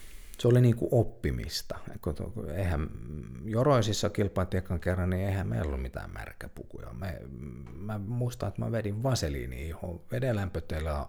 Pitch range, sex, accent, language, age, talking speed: 70-95 Hz, male, native, Finnish, 50-69, 120 wpm